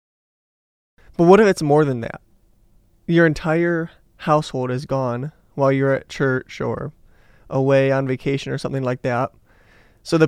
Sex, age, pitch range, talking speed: male, 20-39, 130-150 Hz, 150 wpm